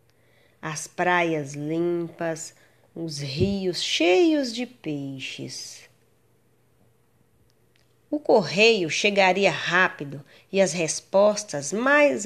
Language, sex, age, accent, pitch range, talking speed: Portuguese, female, 20-39, Brazilian, 150-210 Hz, 80 wpm